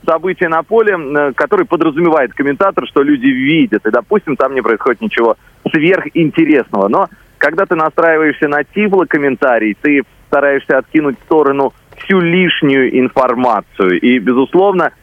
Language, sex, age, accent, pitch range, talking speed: Russian, male, 30-49, native, 135-180 Hz, 130 wpm